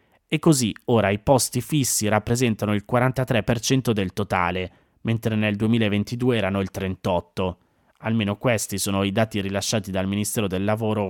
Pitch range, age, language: 100-125 Hz, 20-39, Italian